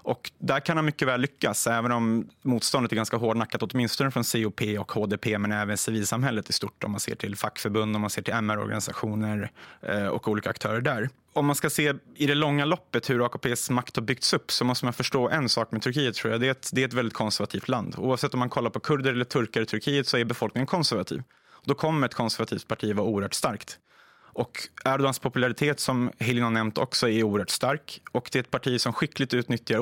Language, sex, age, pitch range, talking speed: Swedish, male, 20-39, 110-135 Hz, 225 wpm